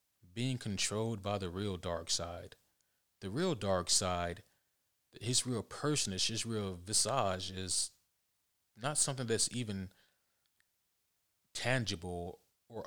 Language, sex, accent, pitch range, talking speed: English, male, American, 95-120 Hz, 110 wpm